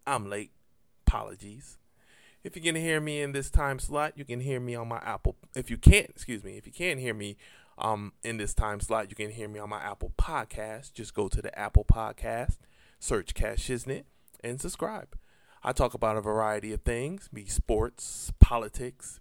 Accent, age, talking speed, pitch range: American, 20-39, 200 wpm, 110-135 Hz